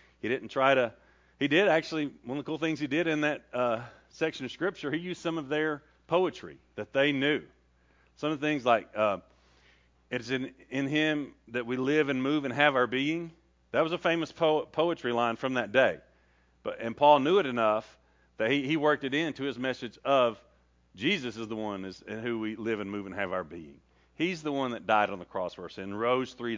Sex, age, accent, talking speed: male, 40-59, American, 225 wpm